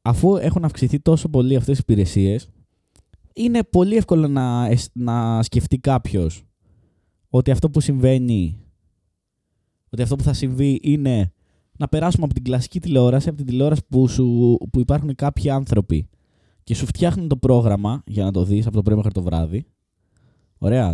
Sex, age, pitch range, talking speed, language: male, 20-39, 100-145 Hz, 160 wpm, Greek